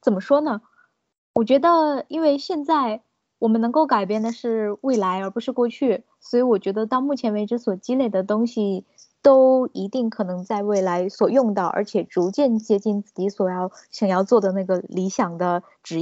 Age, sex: 20-39, female